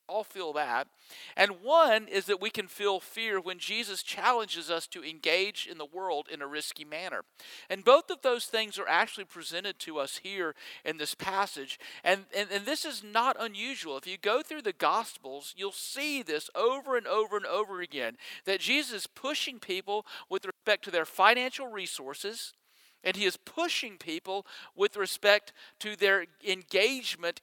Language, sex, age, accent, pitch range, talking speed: English, male, 50-69, American, 185-245 Hz, 175 wpm